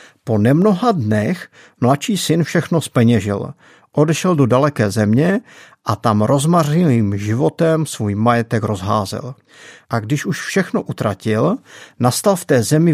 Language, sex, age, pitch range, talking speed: Czech, male, 50-69, 115-155 Hz, 125 wpm